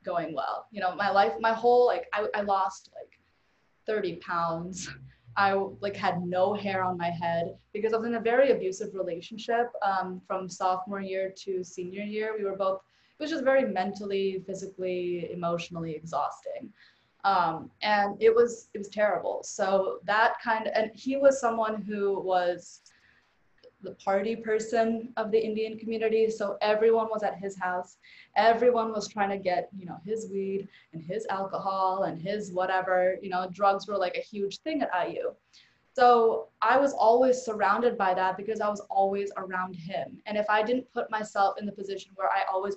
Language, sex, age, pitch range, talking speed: English, female, 20-39, 185-225 Hz, 180 wpm